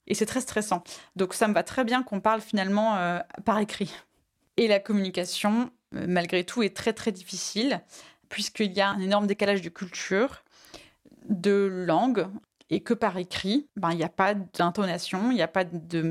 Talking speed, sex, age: 185 wpm, female, 20-39